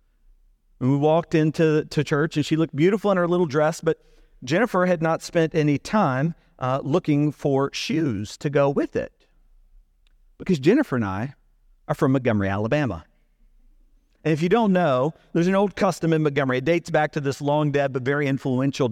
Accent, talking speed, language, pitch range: American, 185 wpm, English, 135-170 Hz